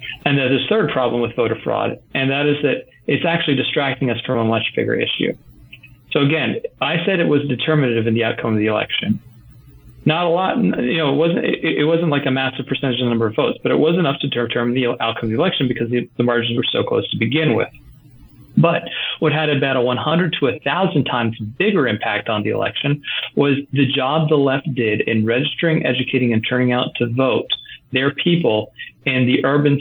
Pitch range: 120-145 Hz